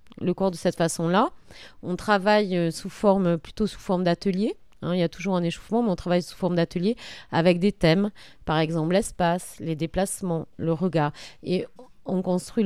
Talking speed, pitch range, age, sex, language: 185 wpm, 160-205 Hz, 30-49, female, French